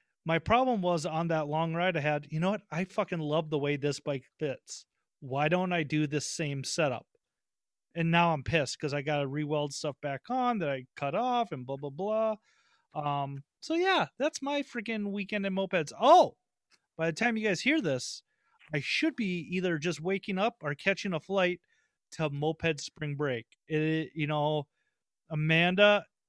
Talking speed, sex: 190 wpm, male